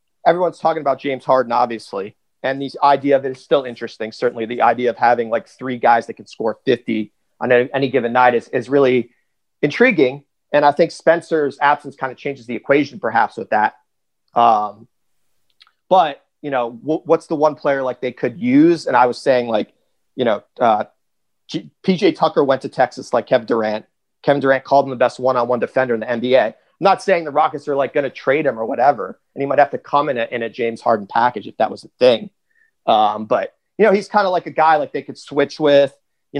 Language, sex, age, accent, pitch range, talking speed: English, male, 30-49, American, 125-150 Hz, 220 wpm